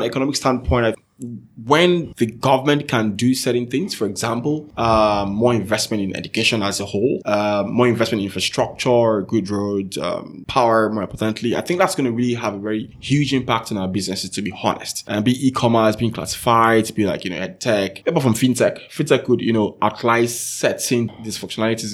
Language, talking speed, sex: English, 195 wpm, male